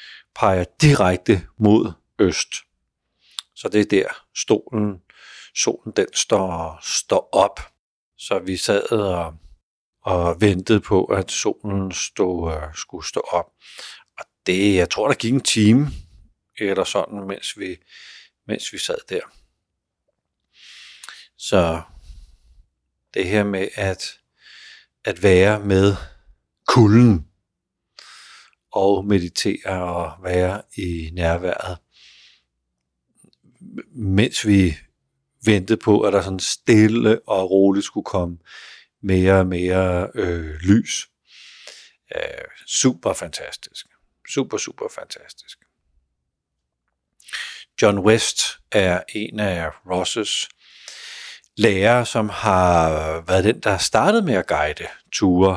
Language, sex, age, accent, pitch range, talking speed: Danish, male, 60-79, native, 85-105 Hz, 105 wpm